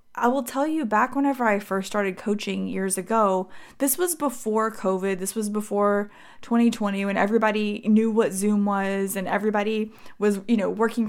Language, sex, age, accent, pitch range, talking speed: English, female, 20-39, American, 195-235 Hz, 175 wpm